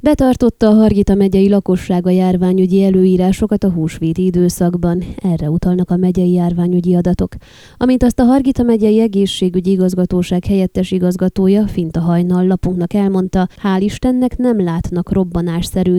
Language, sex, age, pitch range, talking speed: Hungarian, female, 20-39, 170-205 Hz, 130 wpm